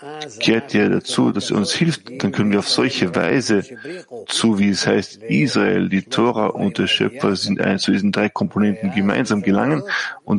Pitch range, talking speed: 105-150 Hz, 185 wpm